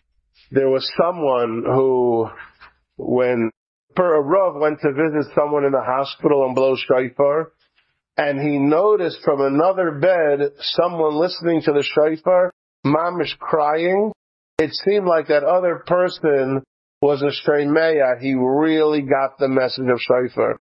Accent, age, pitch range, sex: American, 50-69, 130-155 Hz, male